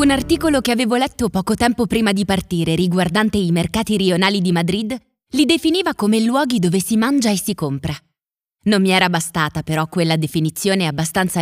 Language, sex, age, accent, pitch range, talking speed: Italian, female, 20-39, native, 175-245 Hz, 180 wpm